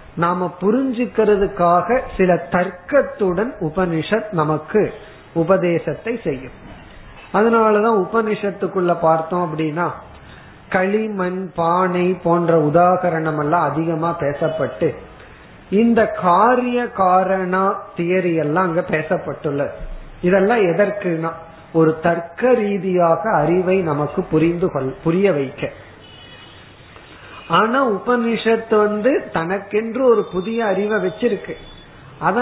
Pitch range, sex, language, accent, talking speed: 165-210 Hz, male, Tamil, native, 80 wpm